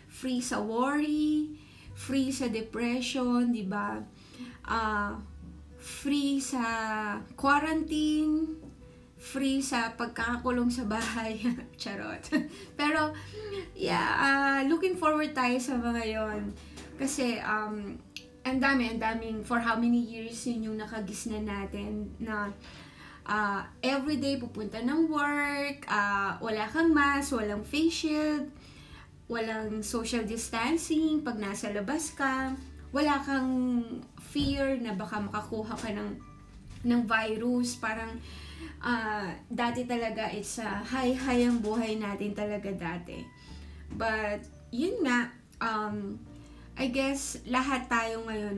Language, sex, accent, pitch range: Filipino, female, native, 215-270 Hz